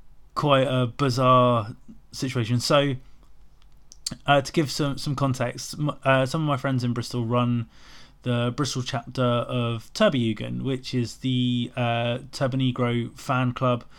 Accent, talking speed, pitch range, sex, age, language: British, 135 wpm, 120-140 Hz, male, 20-39, English